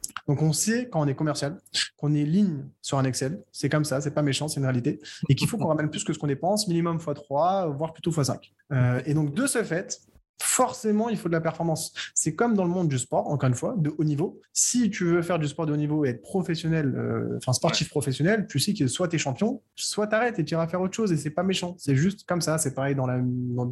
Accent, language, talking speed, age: French, French, 270 wpm, 20-39